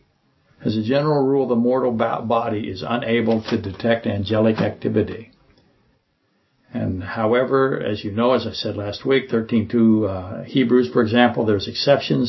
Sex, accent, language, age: male, American, English, 60-79